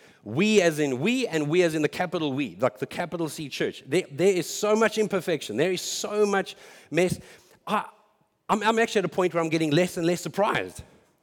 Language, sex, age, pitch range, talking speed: English, male, 50-69, 160-215 Hz, 220 wpm